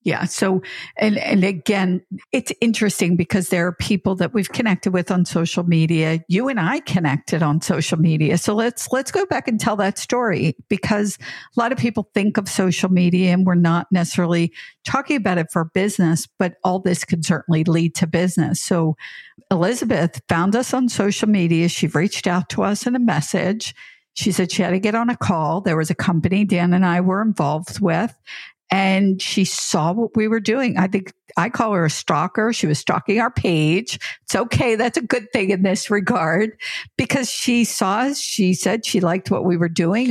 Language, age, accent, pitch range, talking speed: English, 50-69, American, 175-220 Hz, 200 wpm